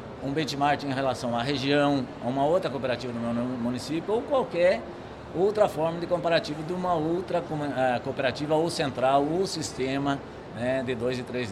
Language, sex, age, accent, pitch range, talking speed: Portuguese, male, 60-79, Brazilian, 125-160 Hz, 165 wpm